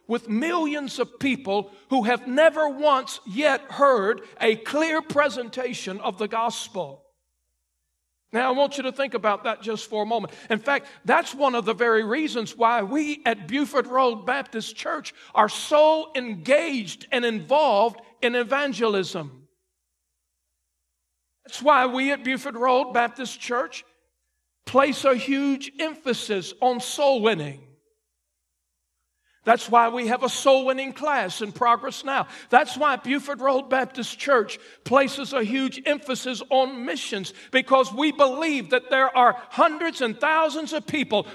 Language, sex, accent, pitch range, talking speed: English, male, American, 205-275 Hz, 140 wpm